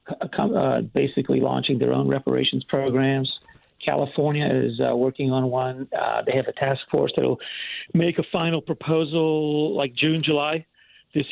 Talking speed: 150 wpm